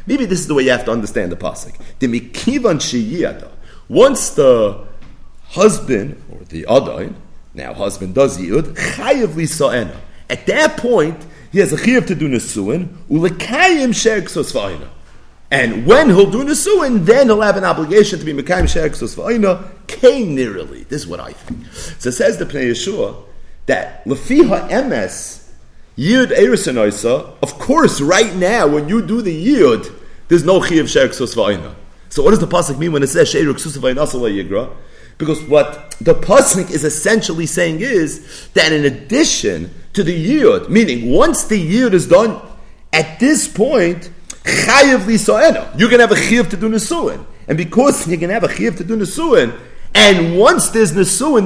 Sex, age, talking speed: male, 40-59, 155 wpm